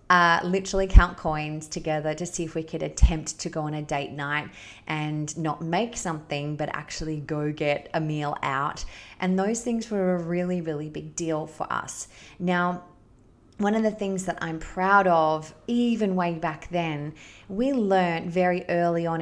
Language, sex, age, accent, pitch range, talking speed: English, female, 20-39, Australian, 165-200 Hz, 180 wpm